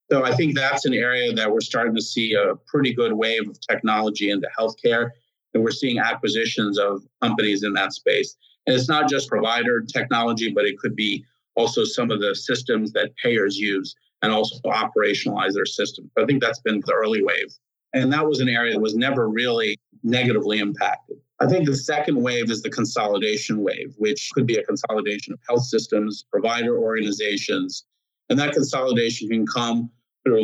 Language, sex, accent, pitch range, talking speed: English, male, American, 110-145 Hz, 185 wpm